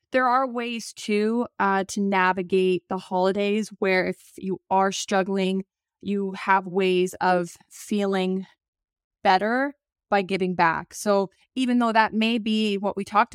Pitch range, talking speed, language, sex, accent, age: 185-215 Hz, 145 wpm, English, female, American, 20-39